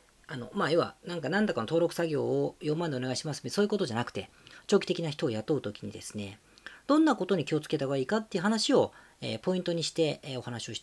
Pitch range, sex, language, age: 145-225 Hz, female, Japanese, 40-59